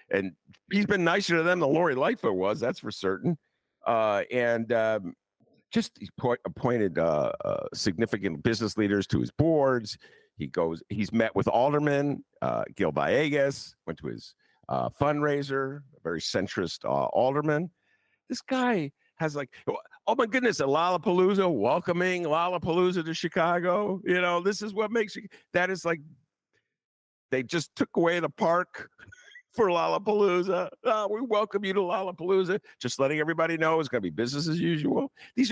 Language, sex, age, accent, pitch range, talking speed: English, male, 50-69, American, 115-190 Hz, 160 wpm